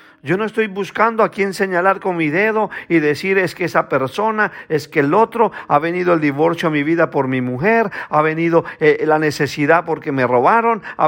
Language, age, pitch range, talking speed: Spanish, 50-69, 140-205 Hz, 210 wpm